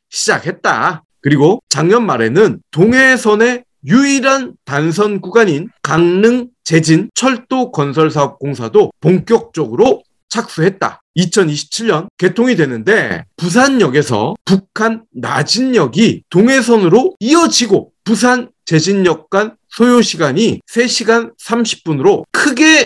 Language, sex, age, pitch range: Korean, male, 30-49, 180-250 Hz